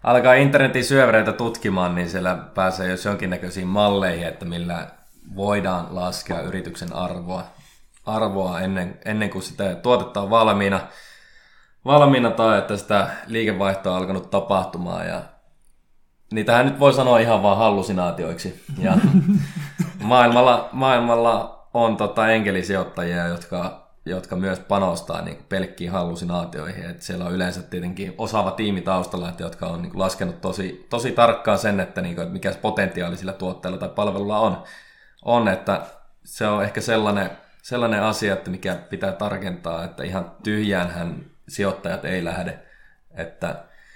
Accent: native